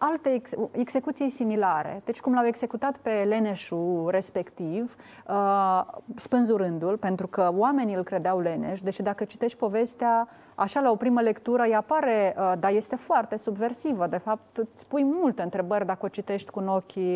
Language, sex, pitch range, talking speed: Romanian, female, 190-245 Hz, 165 wpm